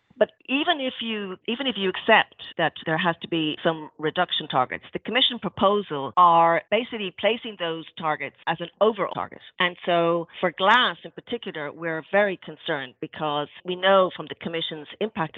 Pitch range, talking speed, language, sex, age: 145-185 Hz, 170 wpm, English, female, 40-59